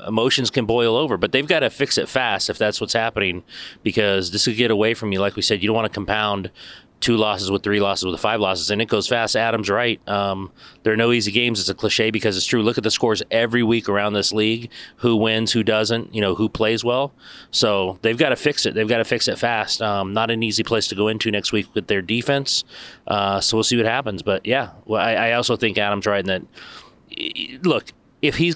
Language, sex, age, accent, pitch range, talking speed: English, male, 30-49, American, 105-125 Hz, 250 wpm